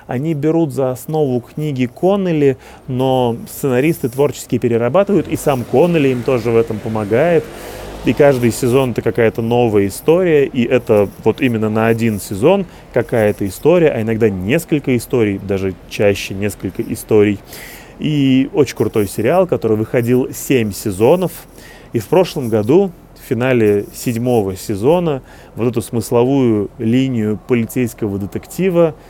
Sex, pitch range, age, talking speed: male, 110-145 Hz, 30-49, 135 wpm